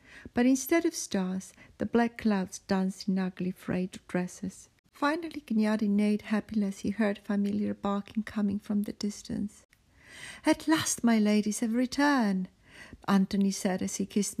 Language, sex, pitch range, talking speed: English, female, 205-240 Hz, 150 wpm